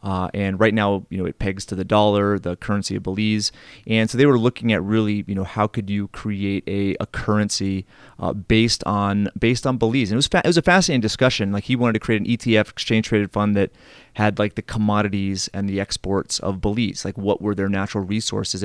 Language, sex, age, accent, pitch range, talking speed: English, male, 30-49, American, 100-115 Hz, 230 wpm